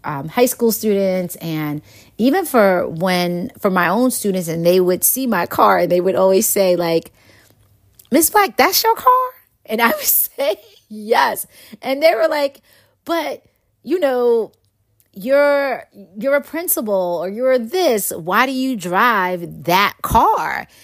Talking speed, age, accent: 155 wpm, 30-49, American